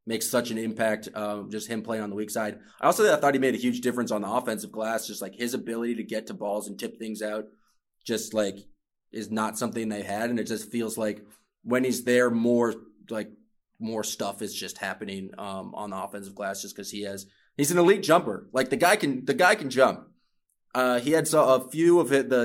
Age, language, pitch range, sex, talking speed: 20-39, English, 110-130 Hz, male, 240 wpm